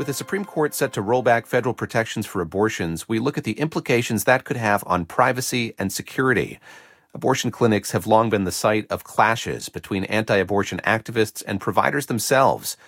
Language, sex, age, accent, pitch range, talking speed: English, male, 40-59, American, 105-135 Hz, 180 wpm